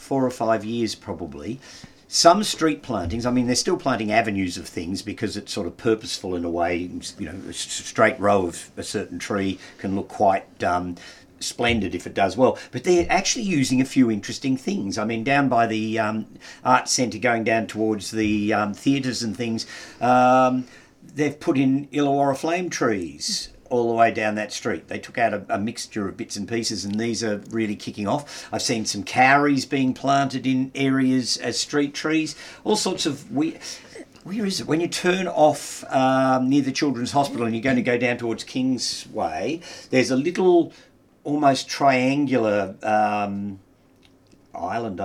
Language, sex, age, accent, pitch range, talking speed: English, male, 50-69, Australian, 110-145 Hz, 180 wpm